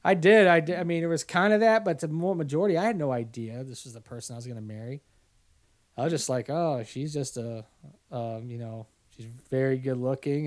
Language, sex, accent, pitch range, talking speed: English, male, American, 125-170 Hz, 240 wpm